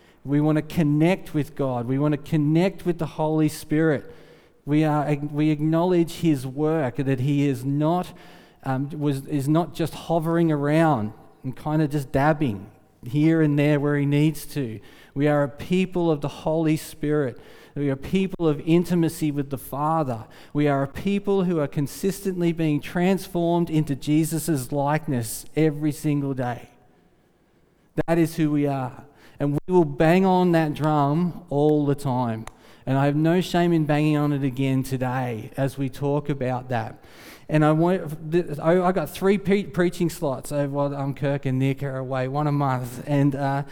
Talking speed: 175 wpm